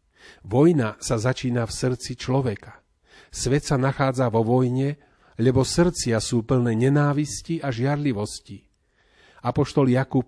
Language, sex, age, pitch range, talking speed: Slovak, male, 40-59, 110-130 Hz, 115 wpm